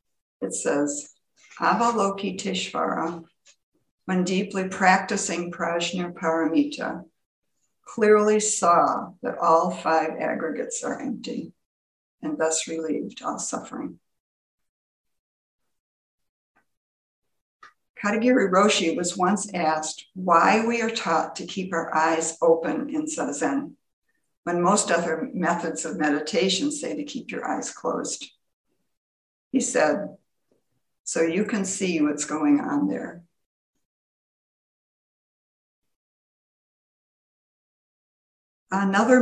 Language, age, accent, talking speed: English, 60-79, American, 90 wpm